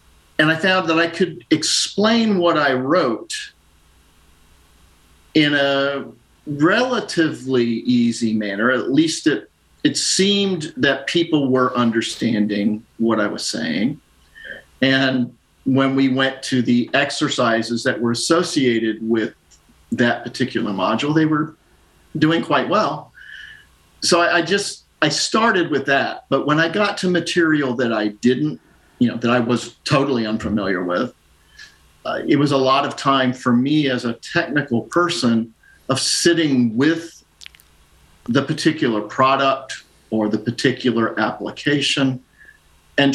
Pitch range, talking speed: 115-155 Hz, 130 wpm